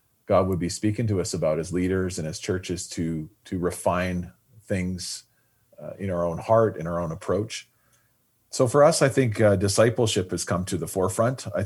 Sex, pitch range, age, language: male, 85-110 Hz, 40-59, English